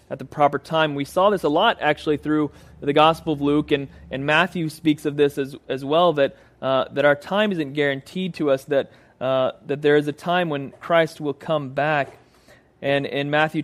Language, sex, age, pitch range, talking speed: English, male, 30-49, 130-155 Hz, 210 wpm